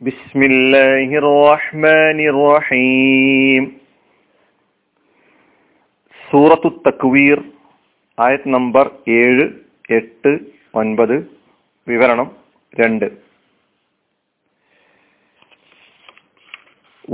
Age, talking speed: 40-59, 45 wpm